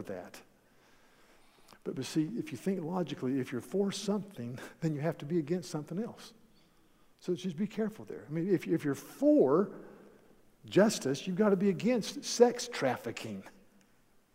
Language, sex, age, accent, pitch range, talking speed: English, male, 50-69, American, 155-210 Hz, 165 wpm